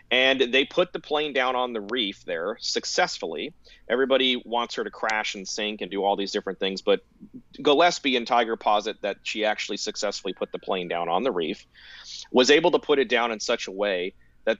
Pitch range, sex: 105-140 Hz, male